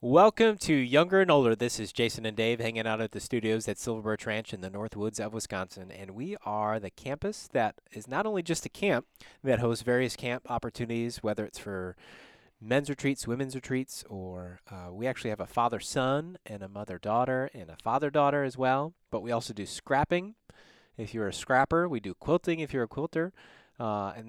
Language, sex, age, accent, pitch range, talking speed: English, male, 30-49, American, 105-130 Hz, 200 wpm